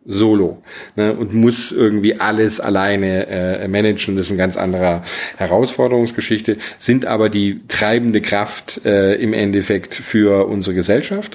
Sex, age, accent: male, 40-59, German